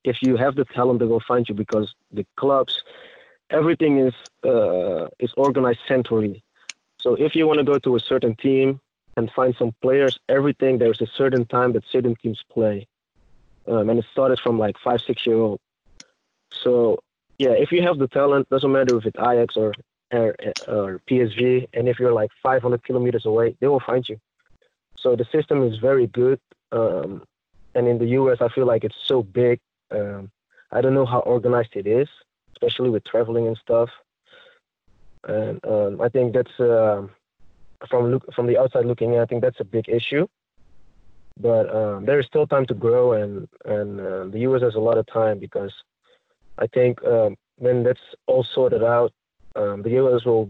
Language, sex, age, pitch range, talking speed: English, male, 20-39, 115-130 Hz, 190 wpm